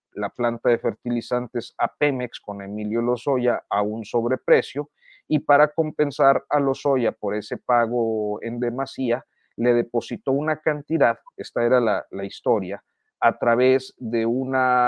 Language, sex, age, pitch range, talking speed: Spanish, male, 40-59, 110-140 Hz, 140 wpm